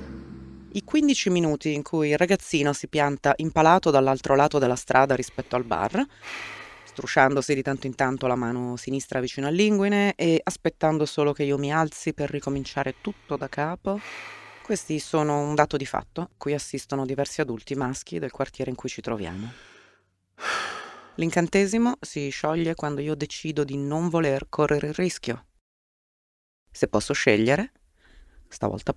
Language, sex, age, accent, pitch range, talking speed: Italian, female, 30-49, native, 130-155 Hz, 150 wpm